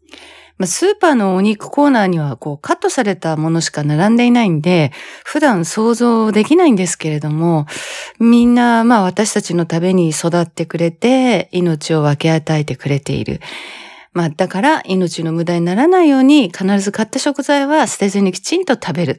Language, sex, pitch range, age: Japanese, female, 170-255 Hz, 40-59